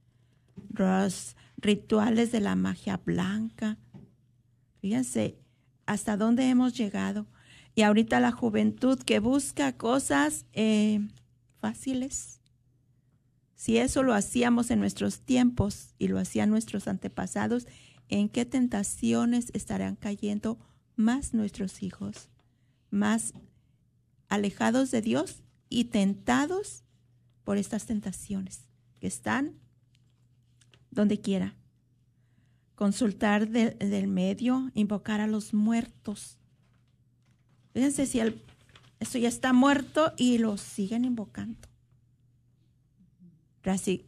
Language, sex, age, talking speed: Spanish, female, 40-59, 100 wpm